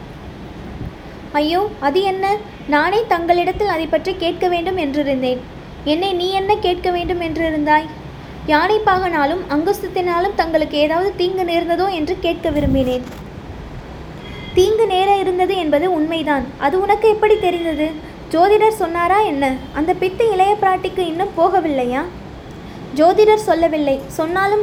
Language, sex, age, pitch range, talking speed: Tamil, female, 20-39, 310-385 Hz, 110 wpm